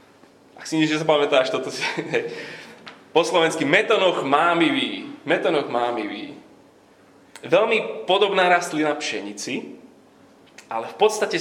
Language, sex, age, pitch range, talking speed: Slovak, male, 30-49, 130-210 Hz, 90 wpm